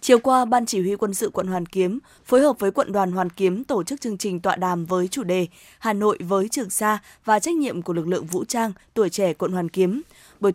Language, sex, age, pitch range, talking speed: Vietnamese, female, 20-39, 185-225 Hz, 255 wpm